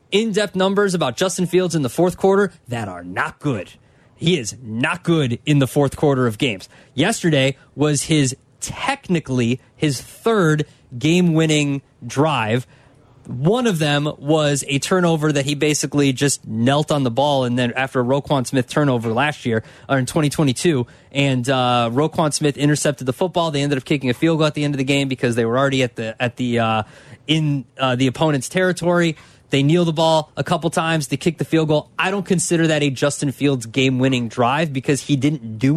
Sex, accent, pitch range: male, American, 130-165 Hz